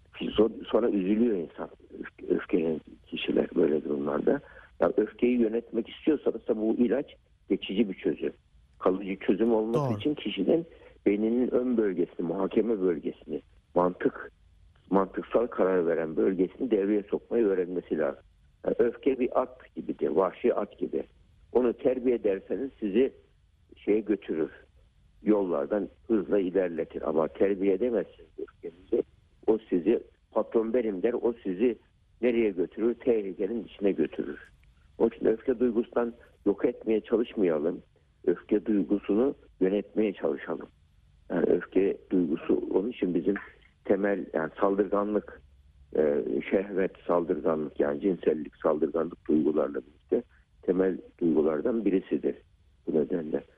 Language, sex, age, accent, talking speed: Turkish, male, 60-79, native, 110 wpm